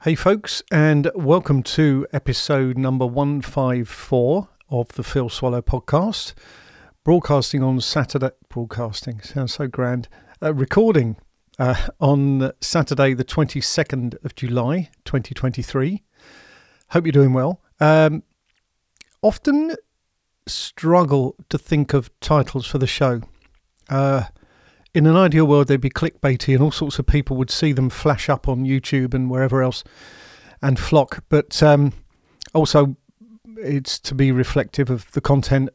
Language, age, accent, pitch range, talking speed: English, 50-69, British, 130-155 Hz, 135 wpm